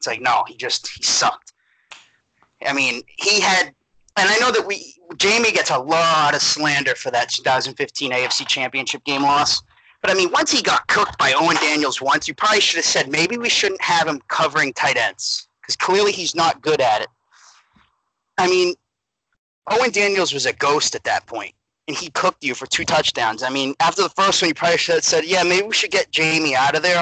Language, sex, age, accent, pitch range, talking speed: English, male, 30-49, American, 140-195 Hz, 215 wpm